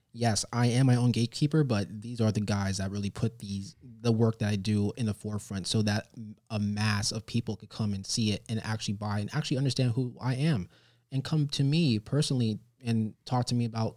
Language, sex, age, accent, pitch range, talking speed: English, male, 20-39, American, 105-125 Hz, 230 wpm